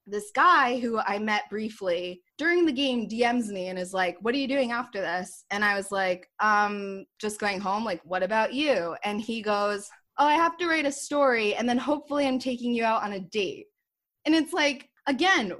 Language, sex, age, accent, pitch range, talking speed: English, female, 20-39, American, 195-255 Hz, 215 wpm